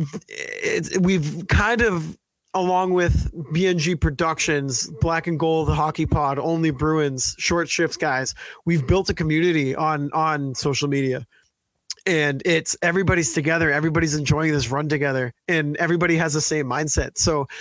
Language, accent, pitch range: English, American, 140-170 Hz